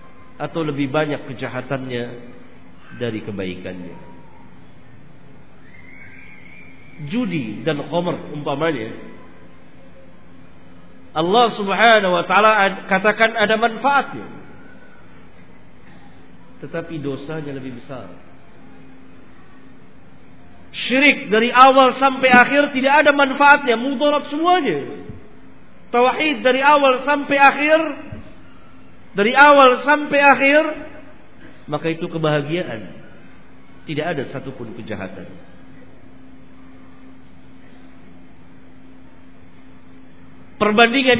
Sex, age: male, 50-69